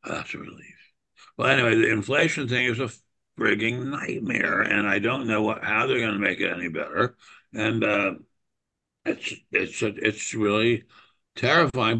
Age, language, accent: 60-79, English, American